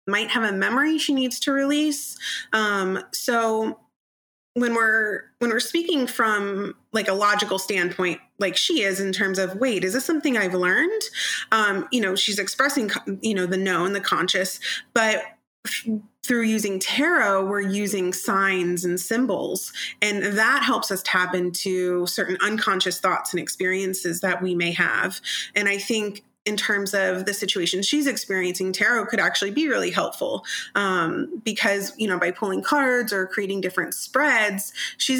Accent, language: American, English